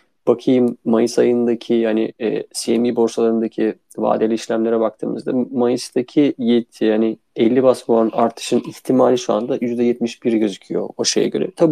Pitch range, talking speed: 115-140 Hz, 135 wpm